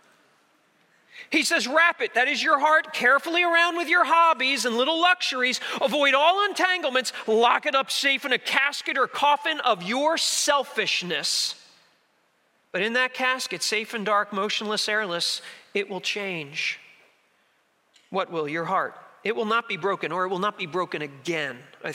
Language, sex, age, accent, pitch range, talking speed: English, male, 40-59, American, 195-295 Hz, 165 wpm